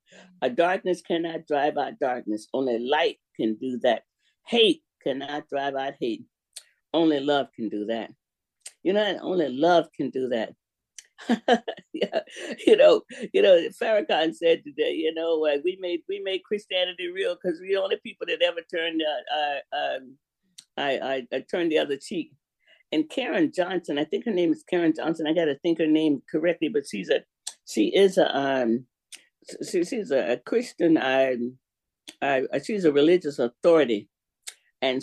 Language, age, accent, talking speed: English, 50-69, American, 165 wpm